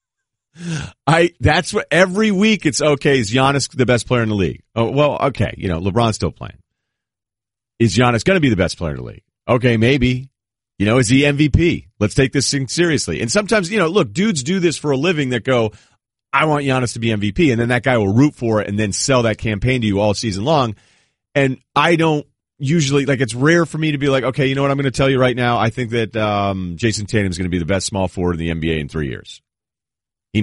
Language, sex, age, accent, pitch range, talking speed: English, male, 40-59, American, 95-130 Hz, 250 wpm